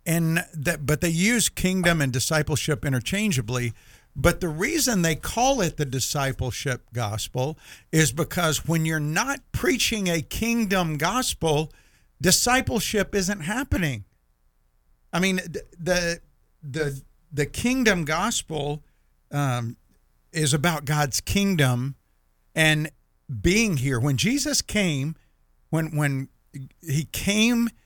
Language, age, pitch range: English, 50-69, 130-180 Hz